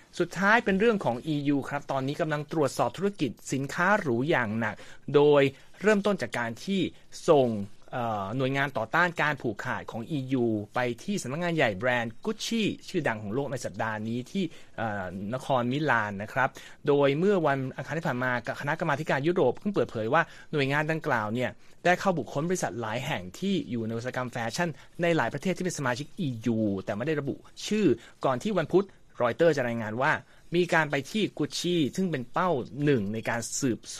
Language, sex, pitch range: Thai, male, 125-170 Hz